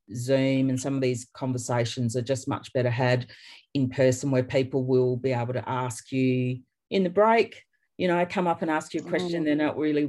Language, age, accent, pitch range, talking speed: English, 40-59, Australian, 125-140 Hz, 215 wpm